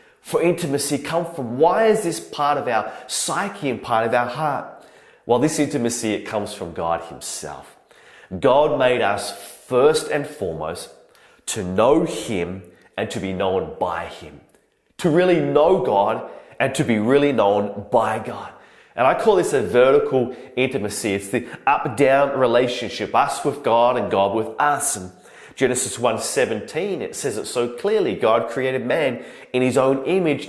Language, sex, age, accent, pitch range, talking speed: English, male, 30-49, Australian, 120-160 Hz, 160 wpm